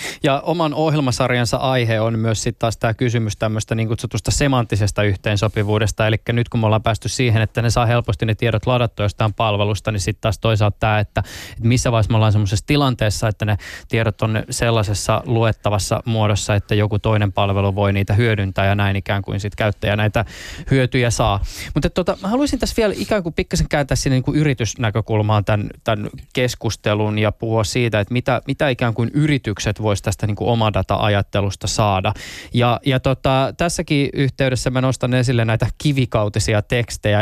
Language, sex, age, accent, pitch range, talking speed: Finnish, male, 20-39, native, 105-125 Hz, 170 wpm